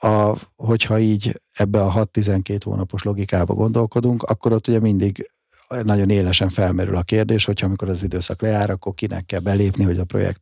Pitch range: 90-110 Hz